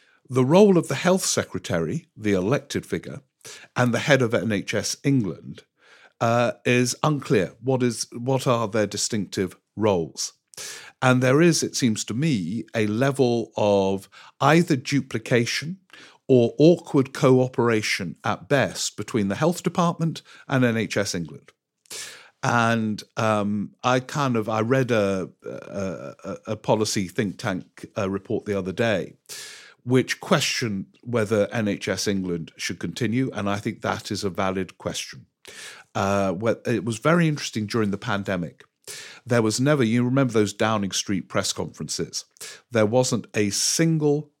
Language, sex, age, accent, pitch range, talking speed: English, male, 50-69, British, 100-130 Hz, 140 wpm